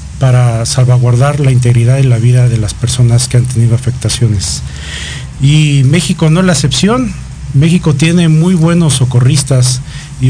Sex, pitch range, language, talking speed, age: male, 125-150 Hz, Spanish, 150 wpm, 50-69